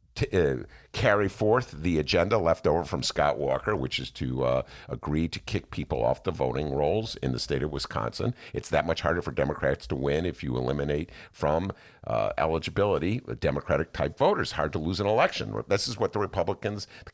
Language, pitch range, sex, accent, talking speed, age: English, 70-105 Hz, male, American, 190 wpm, 50-69